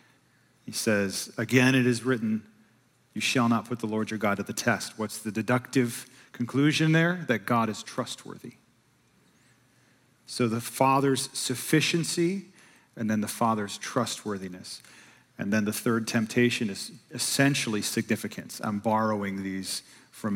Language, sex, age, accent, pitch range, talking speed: English, male, 40-59, American, 105-130 Hz, 140 wpm